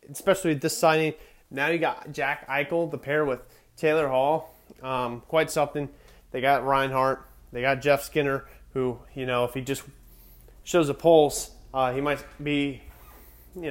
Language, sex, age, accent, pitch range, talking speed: English, male, 20-39, American, 125-160 Hz, 160 wpm